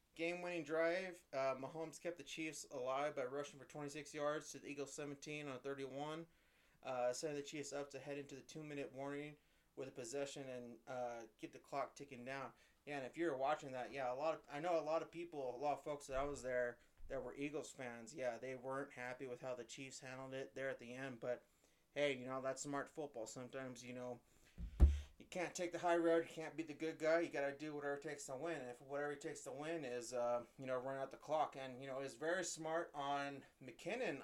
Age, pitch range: 30-49, 125-150 Hz